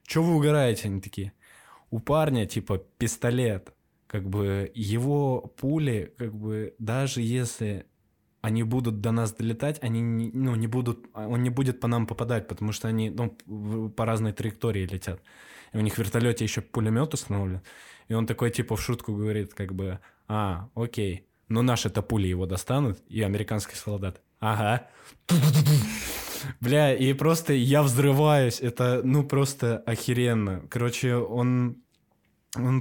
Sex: male